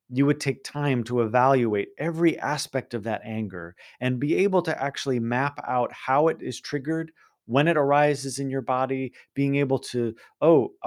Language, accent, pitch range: English, American, 110-140 Hz